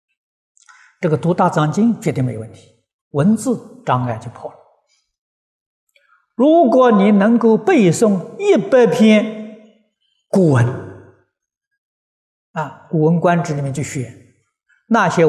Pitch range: 135-210 Hz